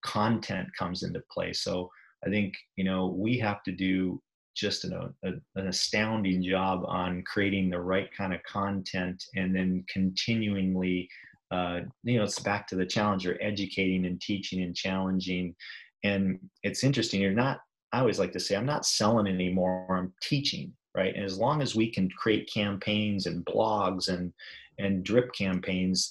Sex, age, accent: male, 30-49, American